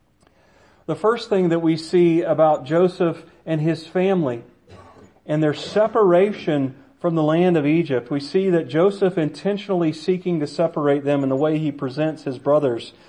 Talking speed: 160 wpm